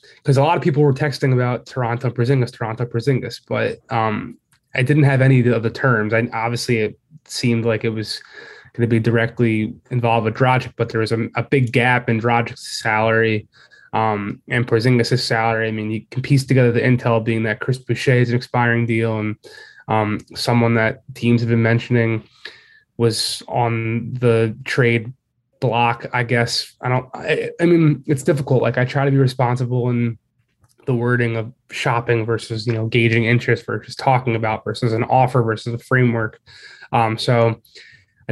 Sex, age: male, 20-39